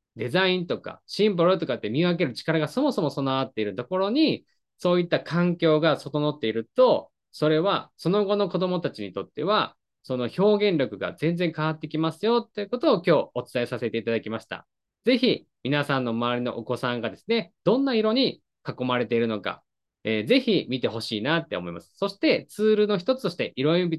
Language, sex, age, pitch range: Japanese, male, 20-39, 120-185 Hz